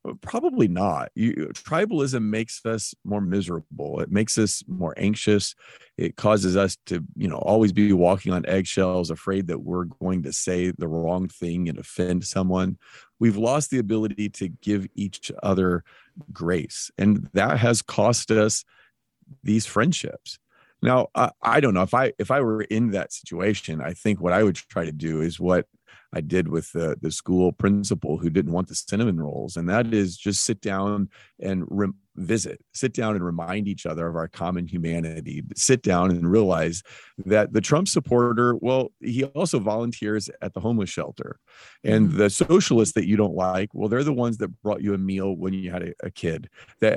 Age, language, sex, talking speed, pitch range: 40-59, English, male, 185 wpm, 90-115 Hz